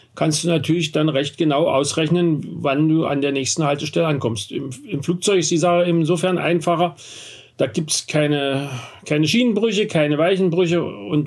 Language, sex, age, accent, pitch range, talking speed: German, male, 40-59, German, 130-155 Hz, 165 wpm